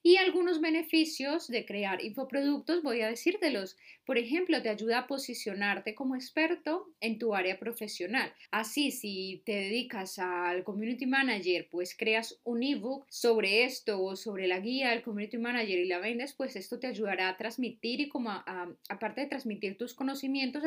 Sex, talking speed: female, 170 wpm